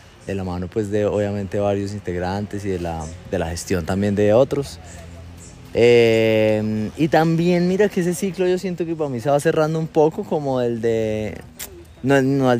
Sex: male